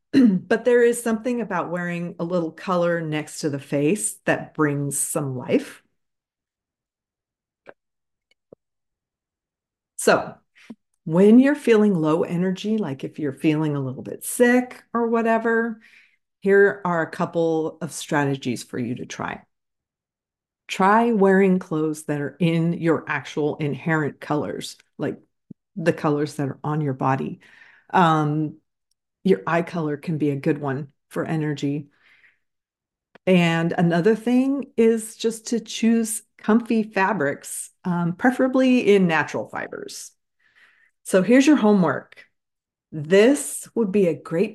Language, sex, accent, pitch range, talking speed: English, female, American, 155-215 Hz, 130 wpm